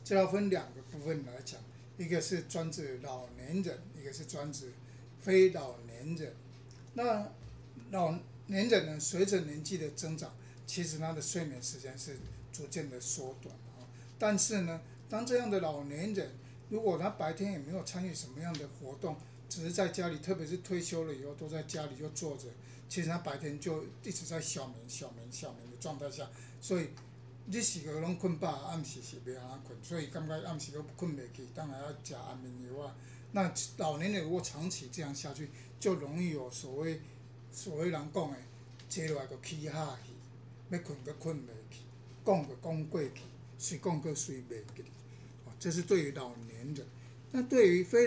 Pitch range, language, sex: 125-170 Hz, Chinese, male